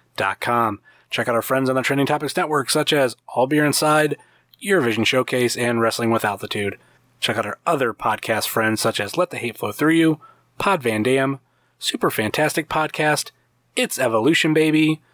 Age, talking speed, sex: 30-49, 180 wpm, male